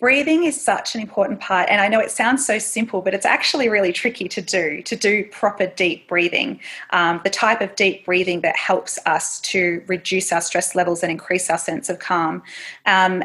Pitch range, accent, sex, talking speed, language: 180-210 Hz, Australian, female, 210 wpm, English